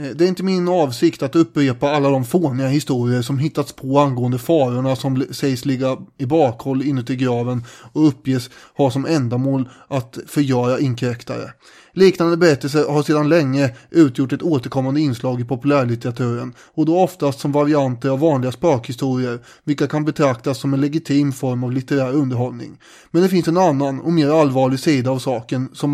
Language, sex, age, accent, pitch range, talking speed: English, male, 30-49, Swedish, 135-160 Hz, 165 wpm